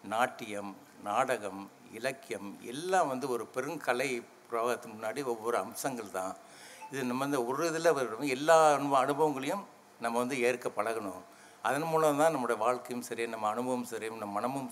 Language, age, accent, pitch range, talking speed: Tamil, 60-79, native, 115-155 Hz, 140 wpm